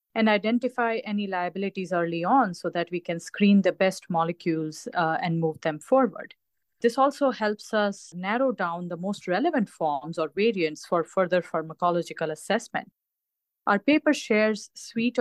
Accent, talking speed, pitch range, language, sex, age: Indian, 155 wpm, 170-210 Hz, English, female, 30-49